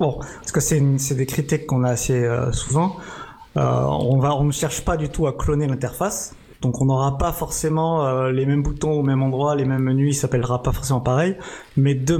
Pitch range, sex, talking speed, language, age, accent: 125-145 Hz, male, 235 wpm, French, 20-39, French